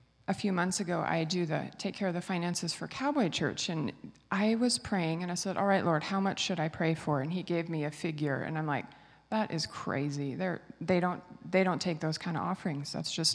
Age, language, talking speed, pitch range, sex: 30-49, English, 245 wpm, 170-220 Hz, female